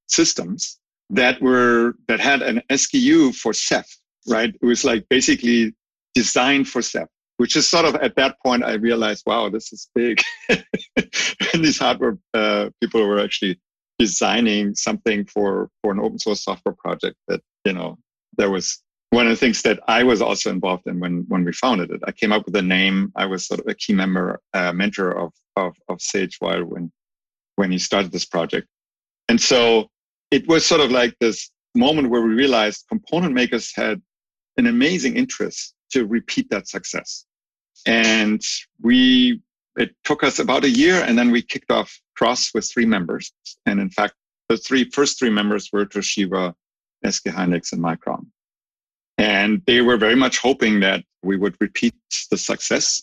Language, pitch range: English, 100-130 Hz